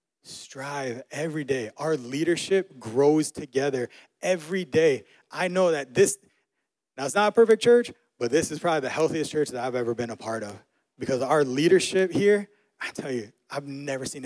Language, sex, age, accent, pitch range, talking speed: English, male, 20-39, American, 125-170 Hz, 180 wpm